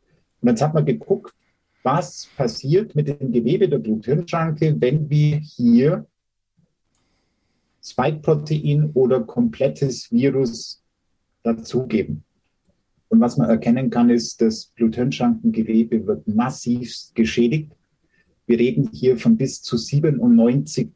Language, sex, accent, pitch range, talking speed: German, male, German, 115-150 Hz, 110 wpm